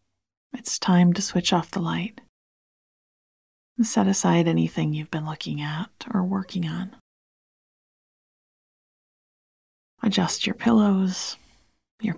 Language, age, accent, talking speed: English, 40-59, American, 110 wpm